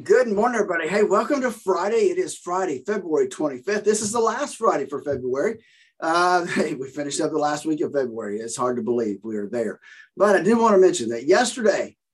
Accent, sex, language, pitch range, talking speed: American, male, English, 145-225 Hz, 215 wpm